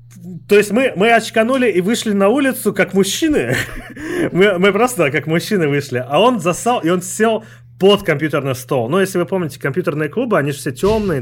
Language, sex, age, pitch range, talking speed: Russian, male, 30-49, 125-195 Hz, 195 wpm